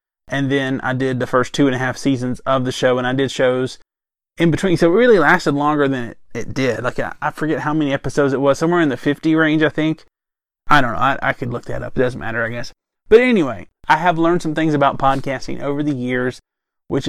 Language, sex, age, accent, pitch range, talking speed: English, male, 20-39, American, 130-165 Hz, 255 wpm